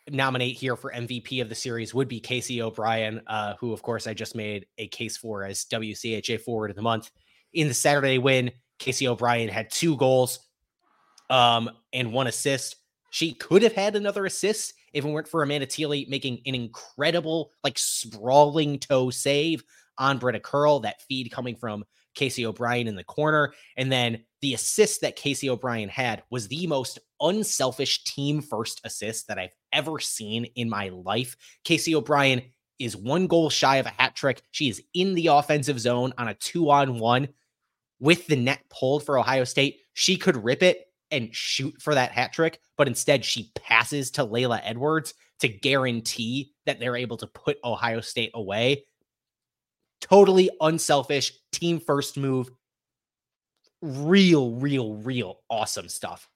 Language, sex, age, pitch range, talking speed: English, male, 20-39, 115-145 Hz, 165 wpm